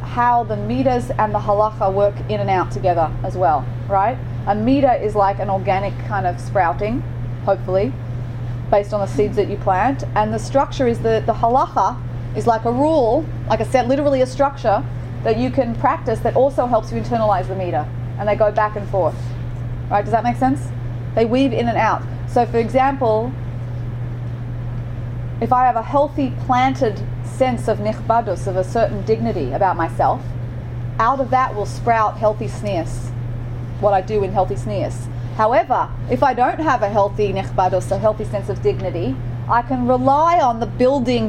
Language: English